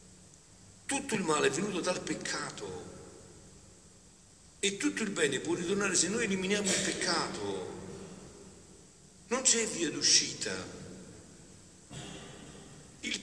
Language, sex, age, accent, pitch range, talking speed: Italian, male, 60-79, native, 155-200 Hz, 105 wpm